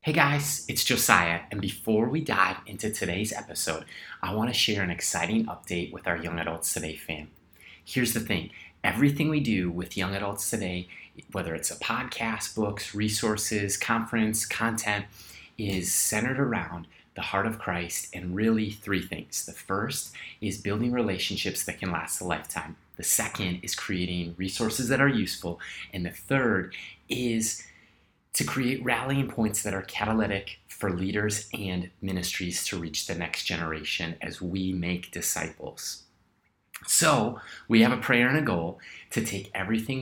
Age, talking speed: 30-49, 160 wpm